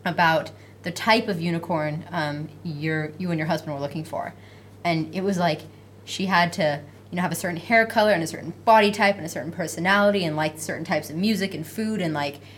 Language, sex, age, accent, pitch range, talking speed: English, female, 20-39, American, 155-205 Hz, 220 wpm